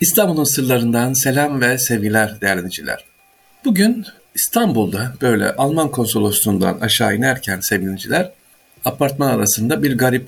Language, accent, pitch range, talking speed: Turkish, native, 105-140 Hz, 105 wpm